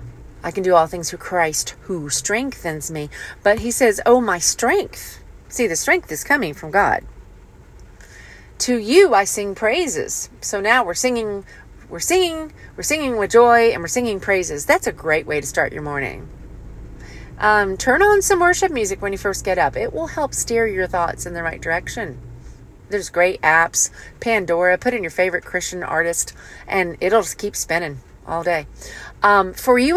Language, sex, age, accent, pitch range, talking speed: English, female, 40-59, American, 170-245 Hz, 180 wpm